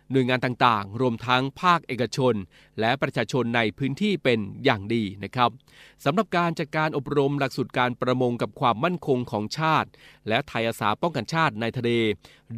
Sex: male